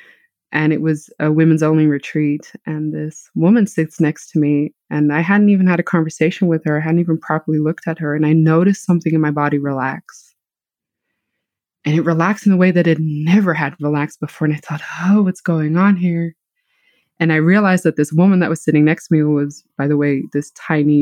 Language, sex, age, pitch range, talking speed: English, female, 20-39, 150-180 Hz, 215 wpm